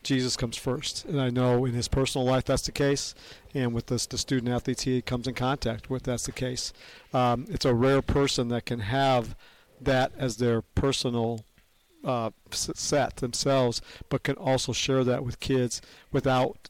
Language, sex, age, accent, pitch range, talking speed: English, male, 50-69, American, 120-130 Hz, 175 wpm